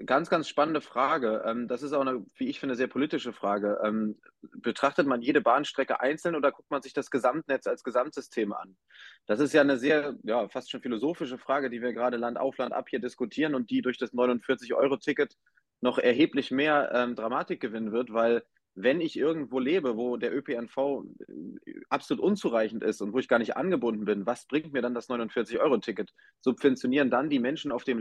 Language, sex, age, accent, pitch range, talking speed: German, male, 30-49, German, 120-150 Hz, 190 wpm